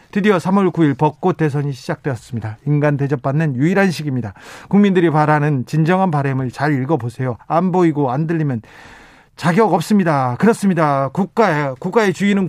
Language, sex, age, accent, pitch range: Korean, male, 40-59, native, 140-175 Hz